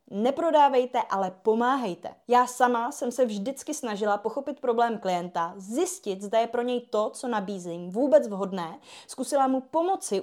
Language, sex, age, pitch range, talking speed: Czech, female, 20-39, 195-260 Hz, 145 wpm